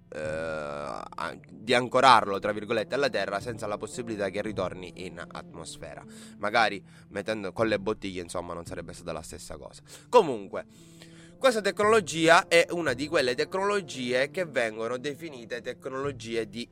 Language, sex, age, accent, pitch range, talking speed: Italian, male, 20-39, native, 95-120 Hz, 135 wpm